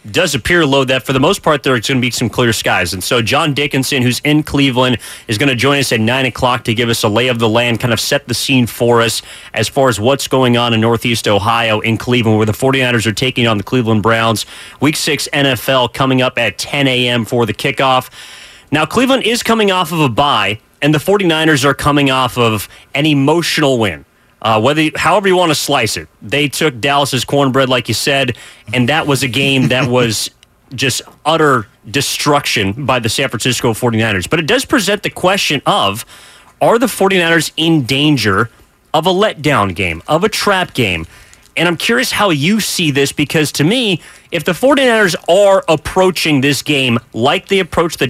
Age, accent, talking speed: 30-49, American, 210 wpm